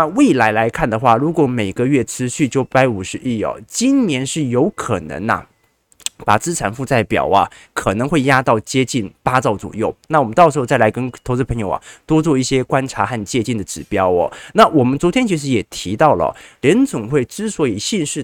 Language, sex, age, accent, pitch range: Chinese, male, 20-39, native, 110-160 Hz